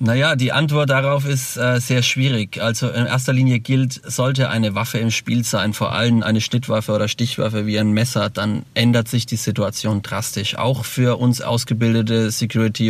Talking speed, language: 180 wpm, German